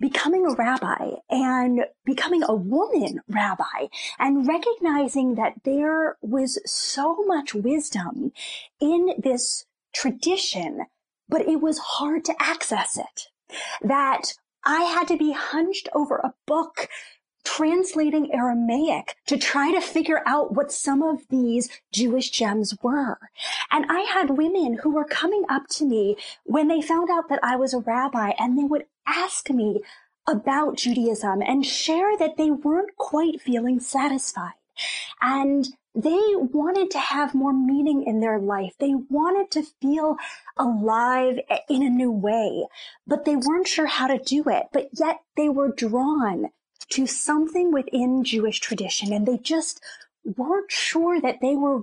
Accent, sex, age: American, female, 30-49